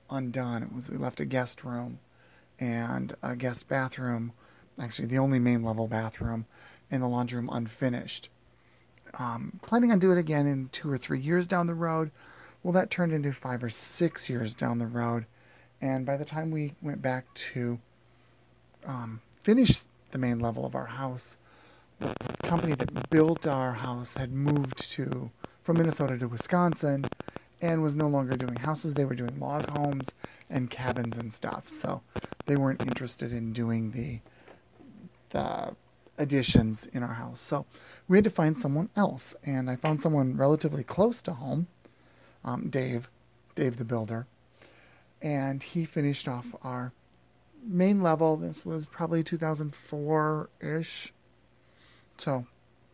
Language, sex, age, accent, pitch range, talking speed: English, male, 30-49, American, 120-155 Hz, 155 wpm